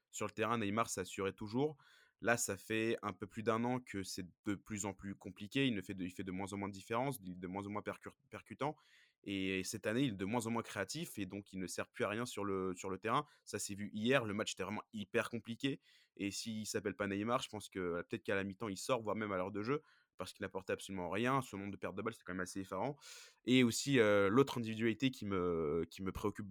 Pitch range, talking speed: 95-115 Hz, 270 wpm